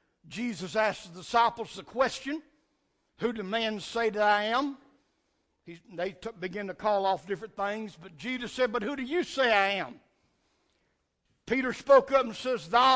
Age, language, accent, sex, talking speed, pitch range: 60-79, English, American, male, 175 wpm, 205-275 Hz